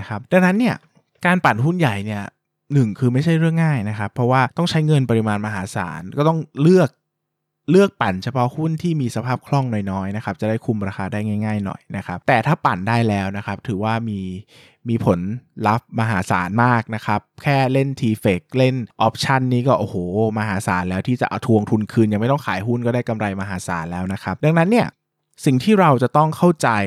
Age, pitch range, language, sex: 20-39, 105-155 Hz, Thai, male